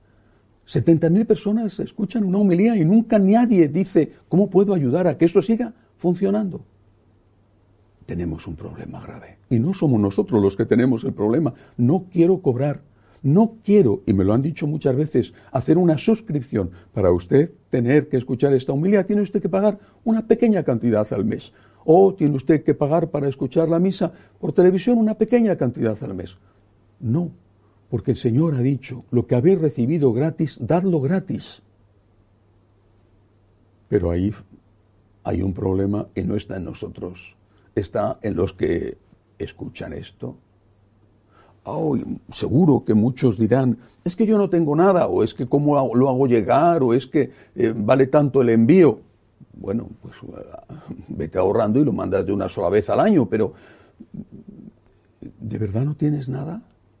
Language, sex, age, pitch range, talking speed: Spanish, male, 60-79, 105-170 Hz, 160 wpm